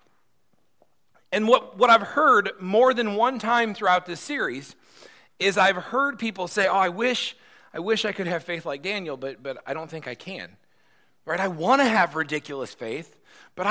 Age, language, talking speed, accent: 40-59, English, 190 wpm, American